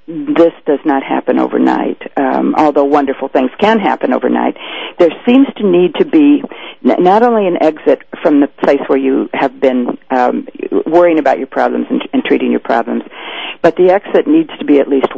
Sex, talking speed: female, 185 wpm